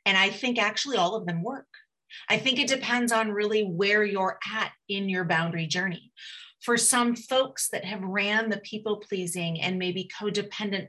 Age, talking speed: 30-49, 175 wpm